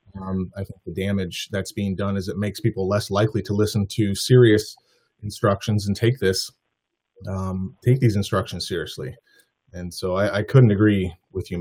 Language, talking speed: English, 180 wpm